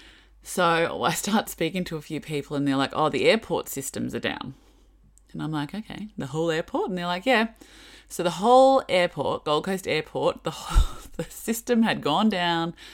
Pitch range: 145-195 Hz